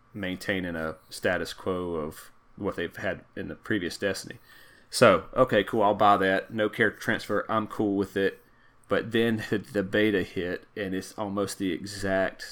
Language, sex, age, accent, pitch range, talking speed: English, male, 30-49, American, 95-110 Hz, 170 wpm